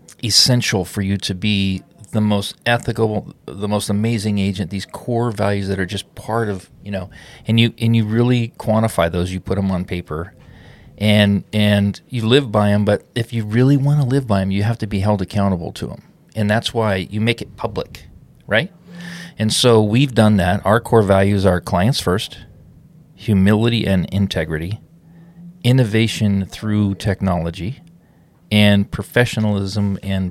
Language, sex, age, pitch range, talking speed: English, male, 40-59, 100-120 Hz, 170 wpm